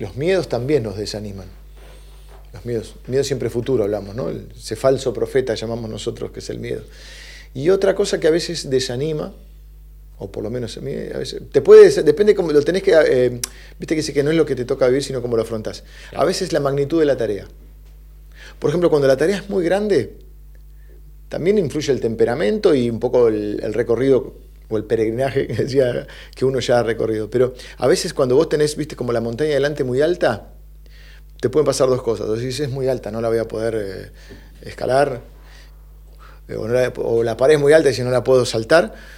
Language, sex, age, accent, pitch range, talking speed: Spanish, male, 40-59, Argentinian, 115-165 Hz, 215 wpm